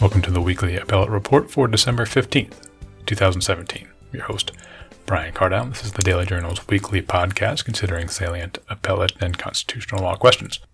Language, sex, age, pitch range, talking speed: English, male, 30-49, 95-105 Hz, 155 wpm